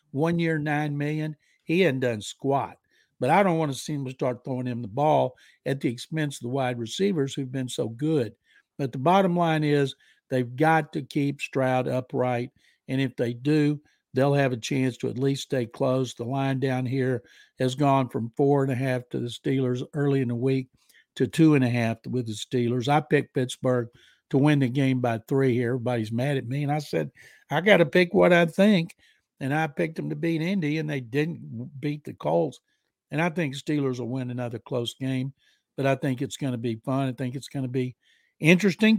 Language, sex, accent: English, male, American